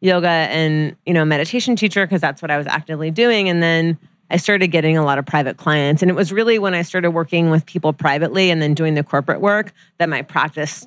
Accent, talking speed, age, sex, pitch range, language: American, 235 wpm, 30-49, female, 155-185 Hz, English